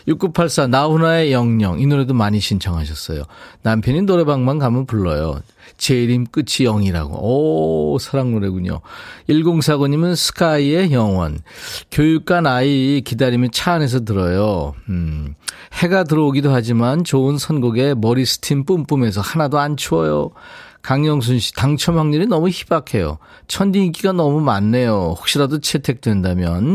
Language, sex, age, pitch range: Korean, male, 40-59, 110-155 Hz